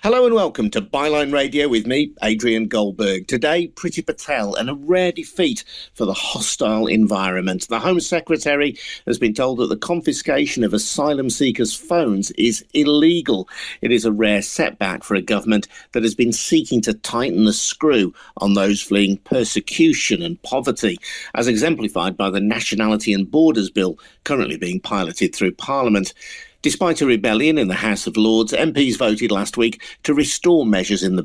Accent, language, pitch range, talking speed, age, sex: British, English, 100-140 Hz, 170 wpm, 50-69, male